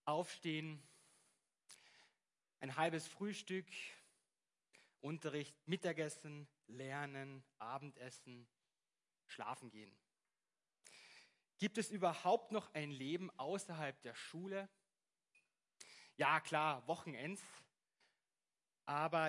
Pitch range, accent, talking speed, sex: 135-195 Hz, German, 70 wpm, male